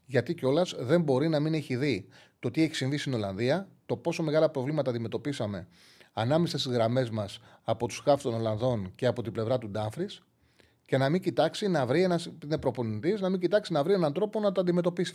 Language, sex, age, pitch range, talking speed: Greek, male, 30-49, 115-165 Hz, 180 wpm